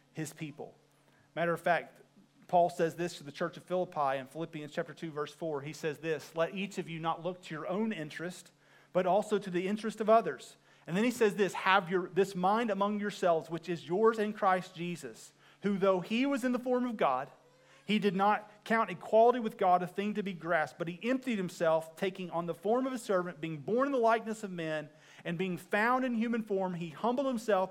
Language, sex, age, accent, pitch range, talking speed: English, male, 40-59, American, 175-235 Hz, 225 wpm